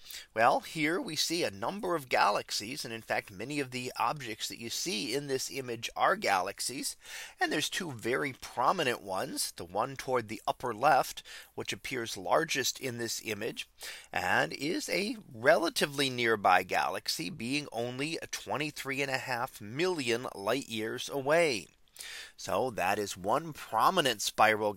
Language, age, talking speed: English, 30-49, 155 wpm